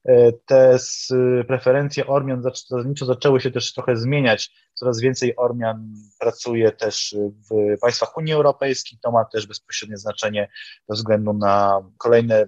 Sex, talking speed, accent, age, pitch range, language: male, 135 wpm, native, 20-39, 105-135 Hz, Polish